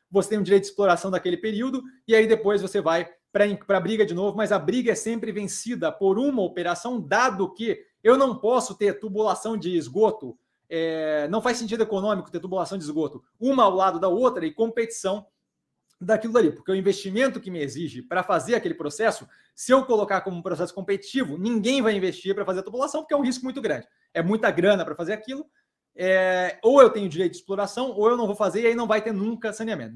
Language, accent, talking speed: Portuguese, Brazilian, 215 wpm